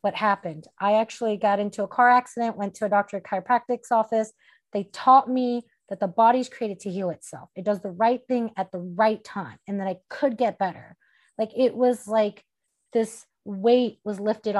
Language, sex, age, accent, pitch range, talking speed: English, female, 30-49, American, 200-245 Hz, 195 wpm